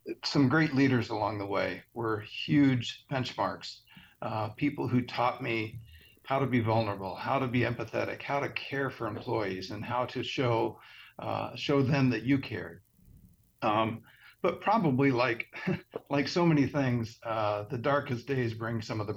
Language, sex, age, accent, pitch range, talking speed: English, male, 50-69, American, 105-125 Hz, 165 wpm